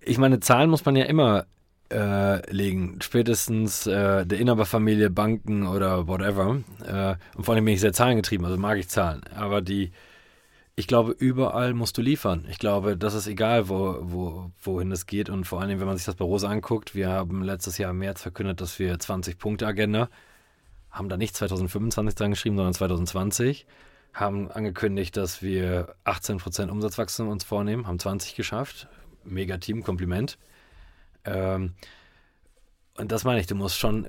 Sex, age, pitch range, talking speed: male, 20-39, 95-110 Hz, 170 wpm